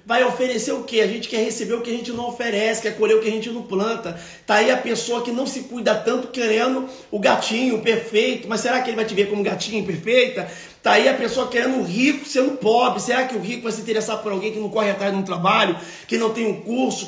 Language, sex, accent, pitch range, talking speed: Portuguese, male, Brazilian, 200-235 Hz, 265 wpm